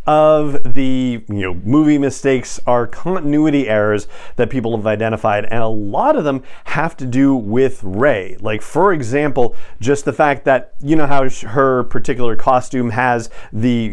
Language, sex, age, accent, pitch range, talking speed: English, male, 40-59, American, 115-145 Hz, 170 wpm